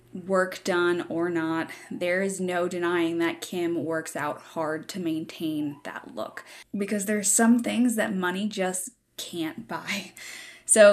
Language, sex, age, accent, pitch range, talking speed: English, female, 10-29, American, 170-210 Hz, 150 wpm